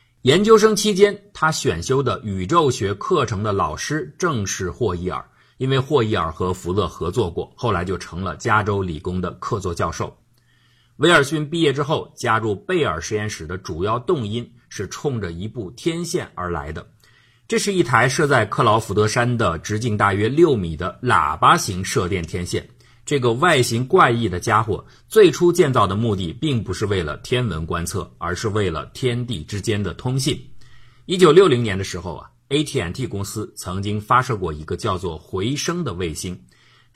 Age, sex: 50-69, male